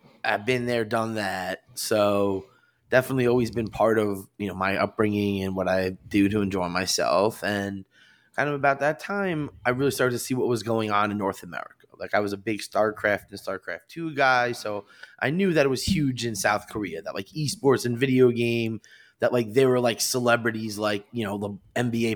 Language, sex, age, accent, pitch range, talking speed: English, male, 20-39, American, 100-120 Hz, 210 wpm